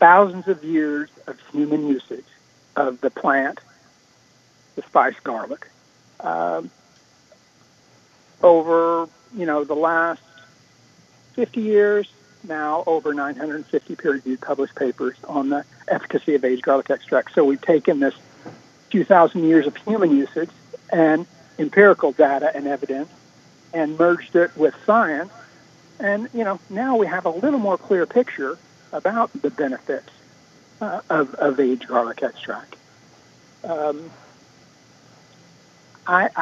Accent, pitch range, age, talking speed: American, 145-190 Hz, 60-79, 125 wpm